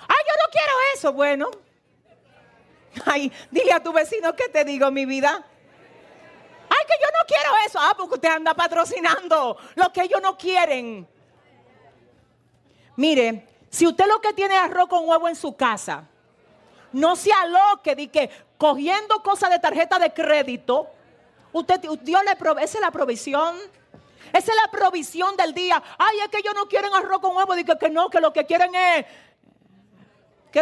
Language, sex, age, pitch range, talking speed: Spanish, female, 40-59, 275-355 Hz, 170 wpm